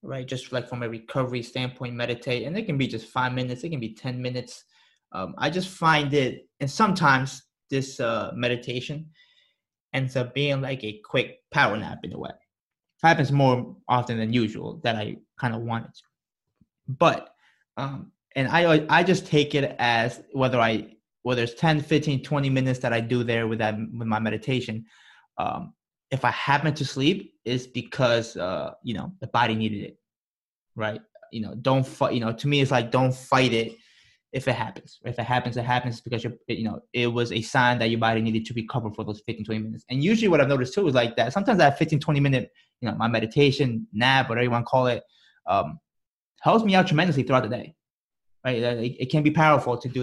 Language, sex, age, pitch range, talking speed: English, male, 20-39, 115-140 Hz, 210 wpm